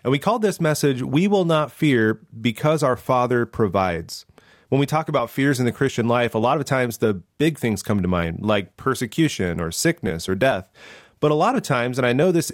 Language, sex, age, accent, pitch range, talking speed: English, male, 30-49, American, 115-160 Hz, 230 wpm